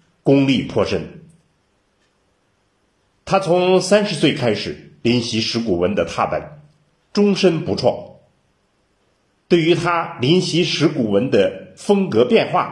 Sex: male